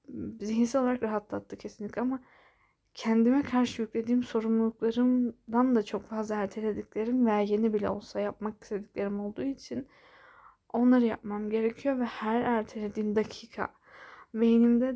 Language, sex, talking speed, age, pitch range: Turkish, female, 115 wpm, 10-29, 220-255 Hz